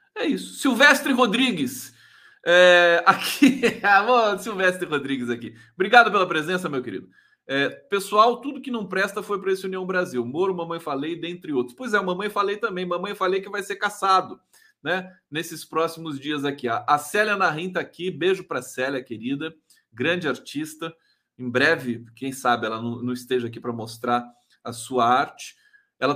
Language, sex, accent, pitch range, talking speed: Portuguese, male, Brazilian, 140-205 Hz, 160 wpm